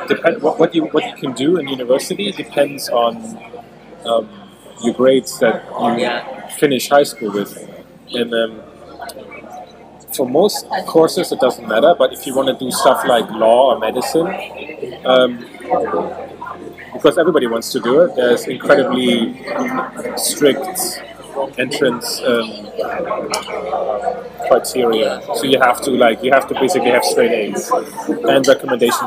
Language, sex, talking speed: English, male, 135 wpm